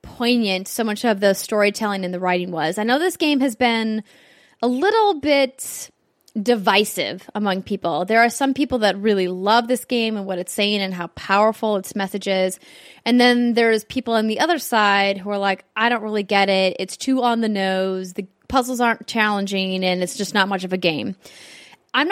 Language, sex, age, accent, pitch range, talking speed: English, female, 10-29, American, 195-240 Hz, 205 wpm